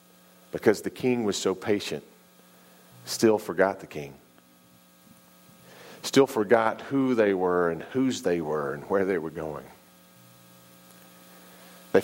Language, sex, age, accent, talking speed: English, male, 40-59, American, 125 wpm